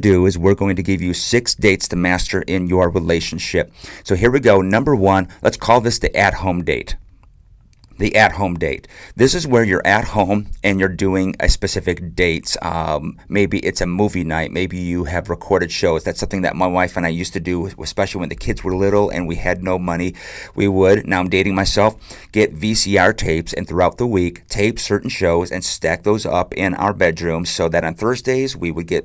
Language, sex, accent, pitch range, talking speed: English, male, American, 90-105 Hz, 215 wpm